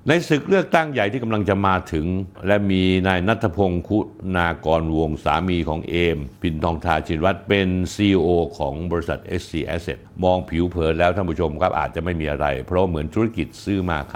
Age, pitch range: 60-79, 80-105 Hz